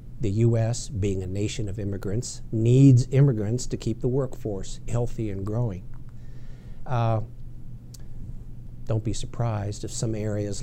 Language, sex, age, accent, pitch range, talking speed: English, male, 60-79, American, 105-125 Hz, 130 wpm